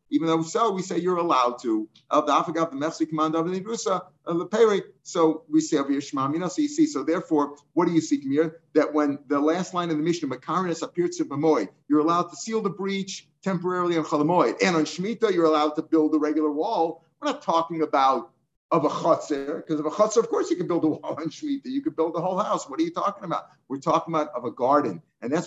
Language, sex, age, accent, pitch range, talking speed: English, male, 50-69, American, 145-175 Hz, 245 wpm